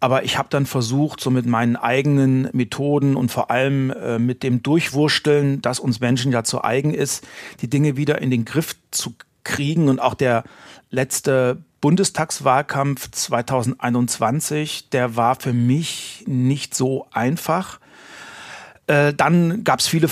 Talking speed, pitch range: 150 wpm, 125-150 Hz